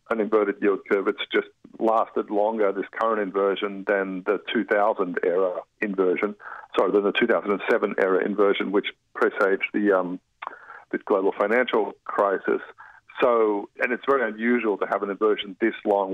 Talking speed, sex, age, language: 145 wpm, male, 50-69, English